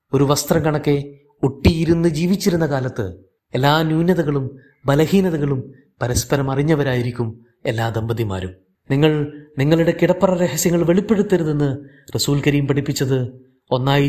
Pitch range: 115-150 Hz